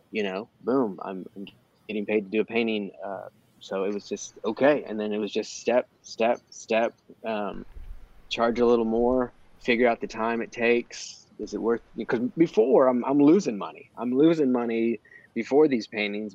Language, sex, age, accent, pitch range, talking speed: English, male, 20-39, American, 105-120 Hz, 185 wpm